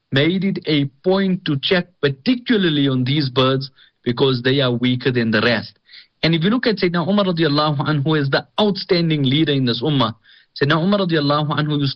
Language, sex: English, male